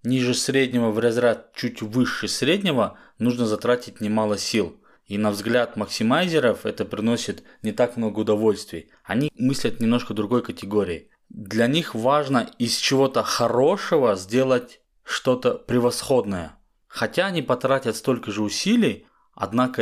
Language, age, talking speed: Russian, 20-39, 125 wpm